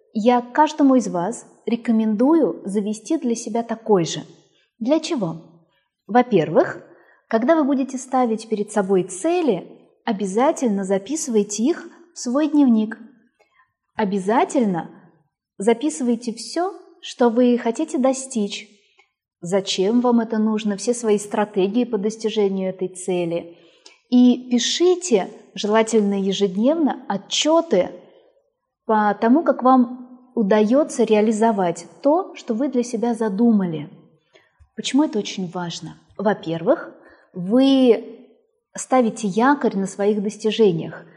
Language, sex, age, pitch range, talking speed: Russian, female, 20-39, 200-255 Hz, 105 wpm